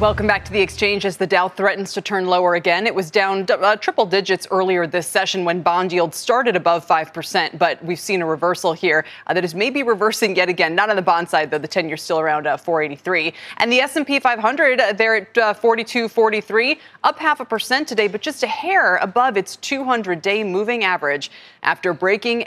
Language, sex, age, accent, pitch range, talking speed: English, female, 20-39, American, 175-235 Hz, 215 wpm